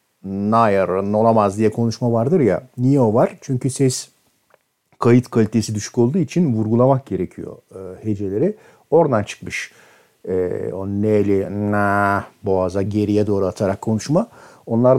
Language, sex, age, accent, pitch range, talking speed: Turkish, male, 50-69, native, 100-135 Hz, 130 wpm